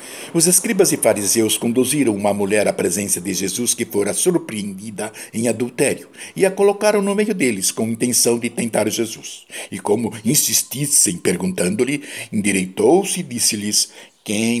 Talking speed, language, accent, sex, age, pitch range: 145 wpm, Portuguese, Brazilian, male, 60-79, 105-170 Hz